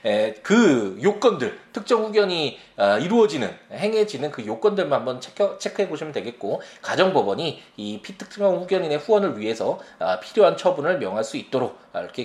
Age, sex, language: 20-39, male, Korean